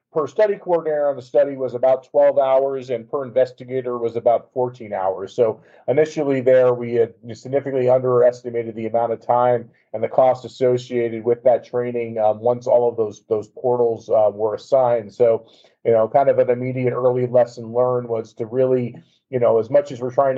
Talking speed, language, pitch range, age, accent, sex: 190 wpm, English, 120-135 Hz, 40-59, American, male